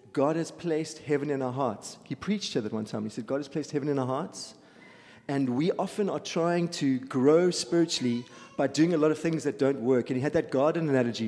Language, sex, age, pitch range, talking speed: English, male, 30-49, 140-190 Hz, 240 wpm